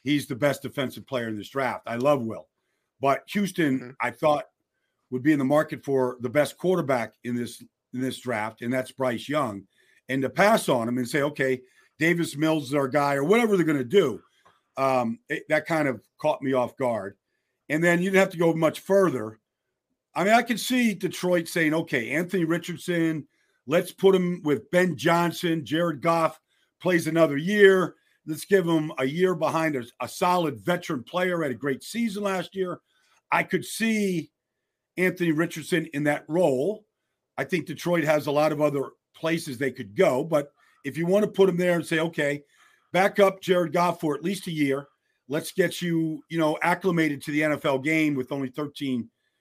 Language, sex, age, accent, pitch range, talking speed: English, male, 50-69, American, 135-180 Hz, 195 wpm